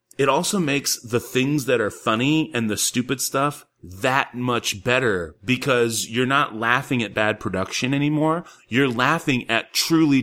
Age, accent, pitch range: 30-49, American, 105-140 Hz